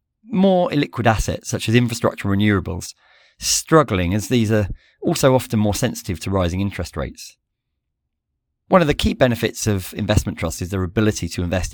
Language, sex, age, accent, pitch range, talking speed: English, male, 30-49, British, 90-115 Hz, 170 wpm